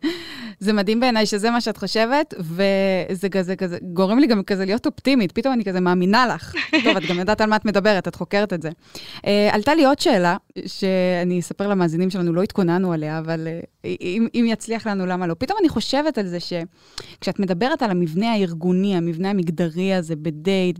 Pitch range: 180-235 Hz